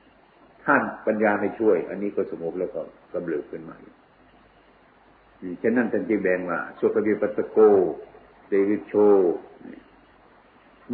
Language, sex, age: Thai, male, 60-79